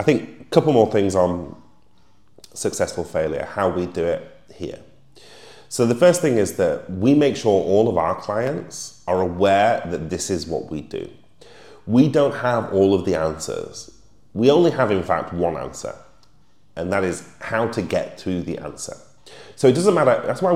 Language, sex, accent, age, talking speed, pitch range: English, male, British, 30-49, 185 wpm, 90-125 Hz